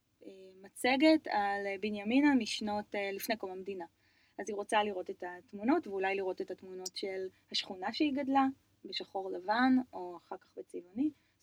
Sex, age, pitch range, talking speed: female, 20-39, 185-255 Hz, 145 wpm